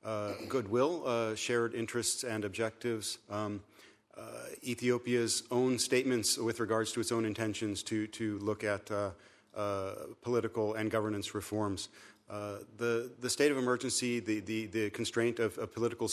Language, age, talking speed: English, 40-59, 155 wpm